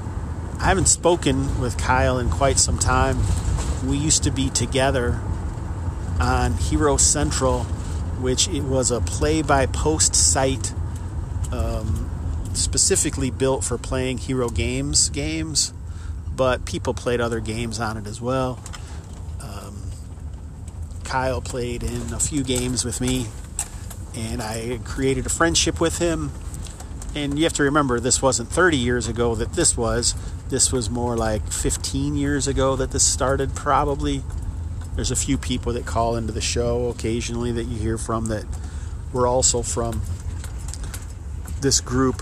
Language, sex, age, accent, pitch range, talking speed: English, male, 40-59, American, 85-120 Hz, 140 wpm